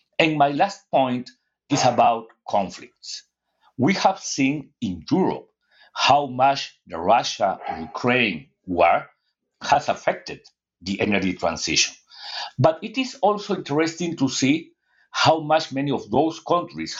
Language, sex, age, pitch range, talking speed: English, male, 60-79, 105-160 Hz, 130 wpm